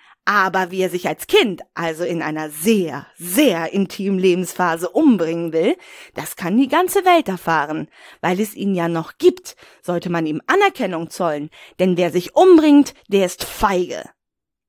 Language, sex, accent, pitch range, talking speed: German, female, German, 180-280 Hz, 160 wpm